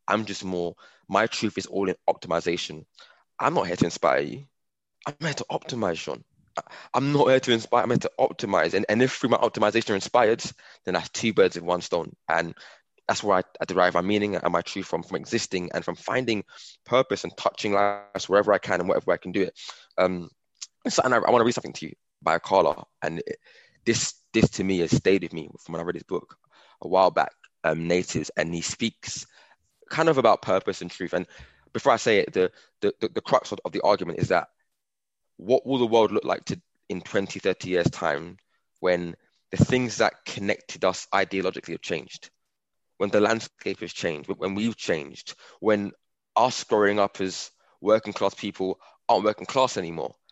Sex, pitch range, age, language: male, 95-115 Hz, 20-39, English